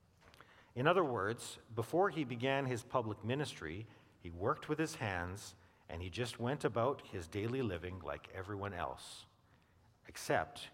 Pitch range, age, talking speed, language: 95-135 Hz, 50-69, 145 wpm, English